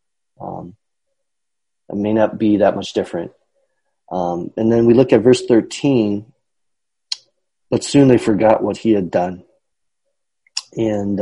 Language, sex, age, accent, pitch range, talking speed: English, male, 30-49, American, 100-115 Hz, 135 wpm